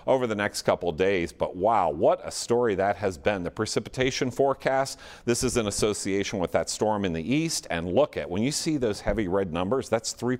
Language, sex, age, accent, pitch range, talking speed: English, male, 40-59, American, 90-130 Hz, 220 wpm